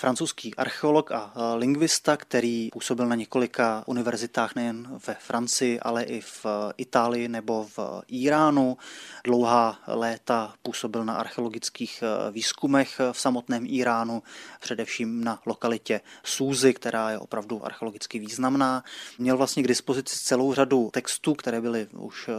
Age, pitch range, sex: 20-39, 115-130 Hz, male